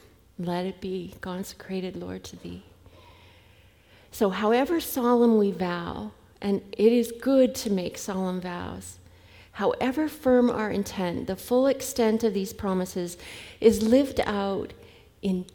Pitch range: 165-225 Hz